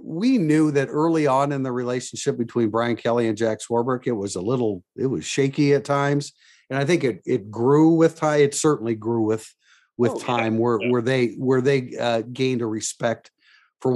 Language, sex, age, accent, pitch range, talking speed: English, male, 50-69, American, 120-145 Hz, 200 wpm